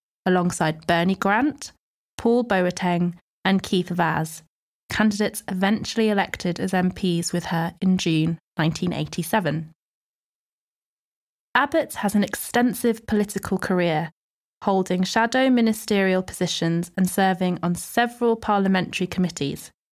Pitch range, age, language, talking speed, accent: 175-215 Hz, 20-39, English, 100 wpm, British